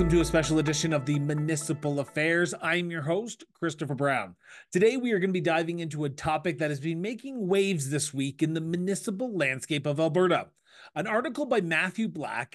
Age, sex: 30-49, male